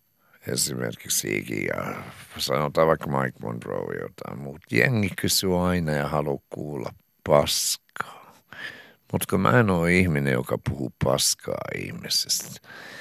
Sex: male